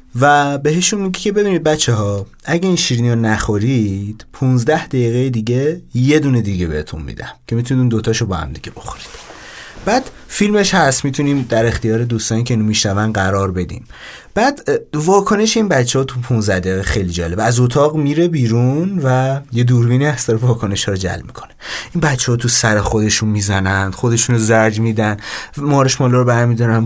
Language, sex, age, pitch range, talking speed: Persian, male, 30-49, 110-150 Hz, 165 wpm